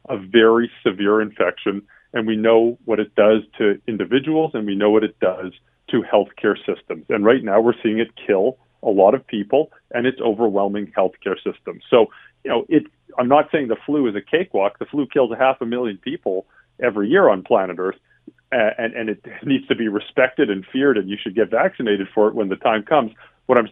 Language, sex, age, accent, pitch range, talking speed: English, male, 40-59, American, 105-130 Hz, 215 wpm